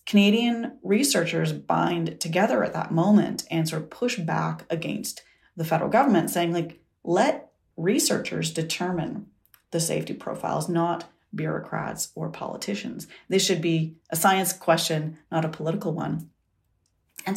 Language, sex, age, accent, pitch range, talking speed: English, female, 30-49, American, 155-195 Hz, 135 wpm